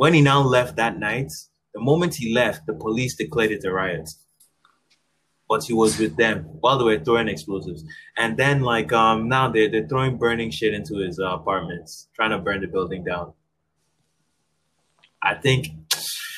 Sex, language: male, English